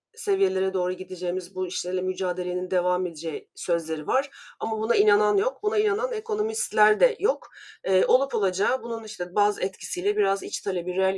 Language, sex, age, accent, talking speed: Turkish, female, 40-59, native, 160 wpm